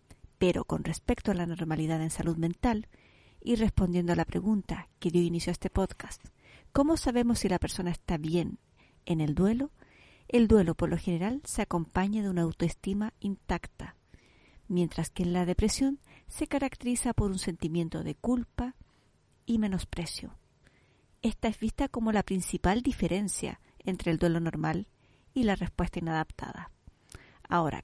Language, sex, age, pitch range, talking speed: Spanish, female, 40-59, 175-225 Hz, 155 wpm